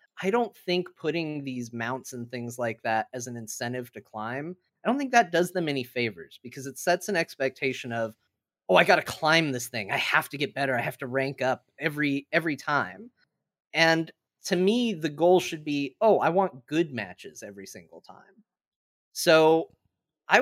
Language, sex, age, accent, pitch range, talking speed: English, male, 30-49, American, 125-165 Hz, 195 wpm